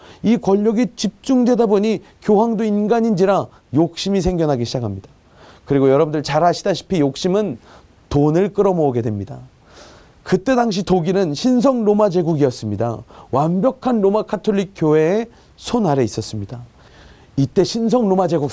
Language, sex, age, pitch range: Korean, male, 30-49, 160-225 Hz